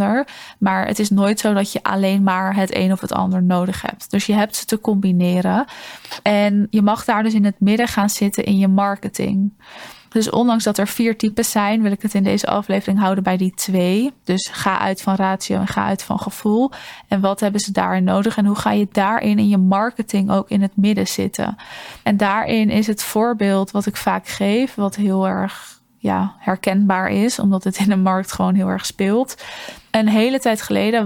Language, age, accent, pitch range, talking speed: Dutch, 20-39, Dutch, 195-215 Hz, 210 wpm